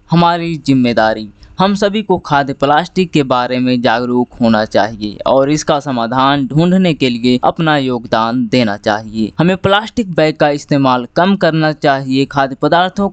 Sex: female